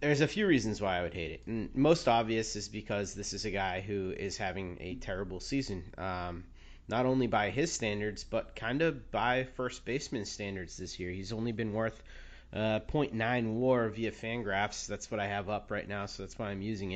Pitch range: 105-125 Hz